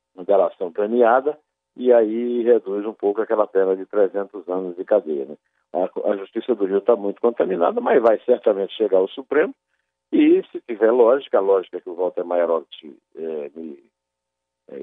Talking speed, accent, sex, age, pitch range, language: 180 wpm, Brazilian, male, 50-69, 85-140 Hz, Portuguese